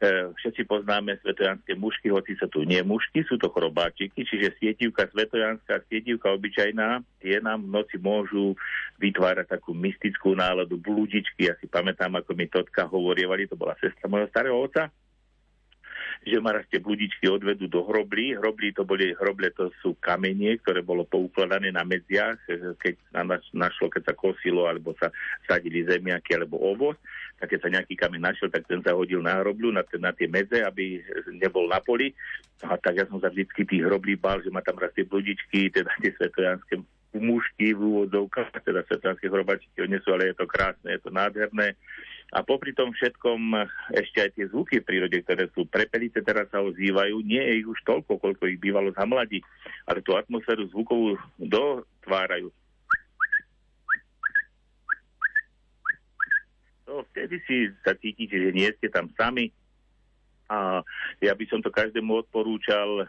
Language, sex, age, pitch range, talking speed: Slovak, male, 50-69, 95-110 Hz, 160 wpm